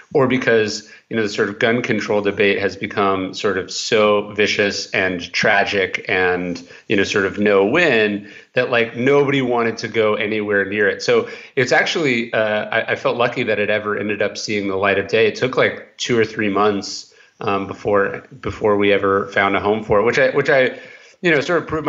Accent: American